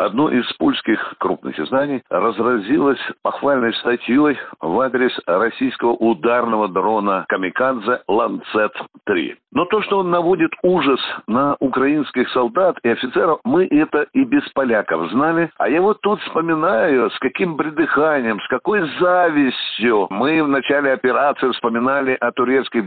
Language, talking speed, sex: Russian, 130 wpm, male